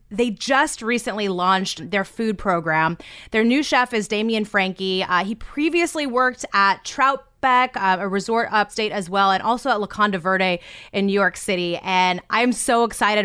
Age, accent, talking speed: 20-39, American, 175 wpm